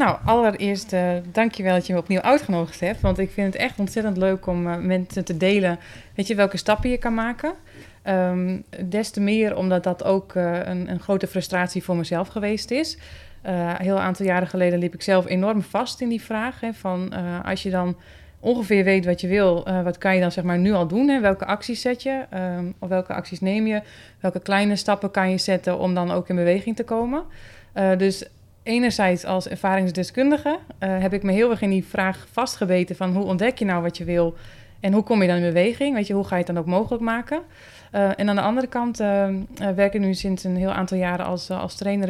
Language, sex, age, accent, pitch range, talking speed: Dutch, female, 20-39, Dutch, 180-210 Hz, 230 wpm